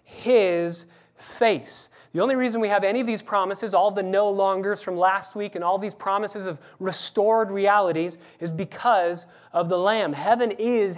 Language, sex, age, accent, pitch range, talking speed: English, male, 30-49, American, 140-200 Hz, 170 wpm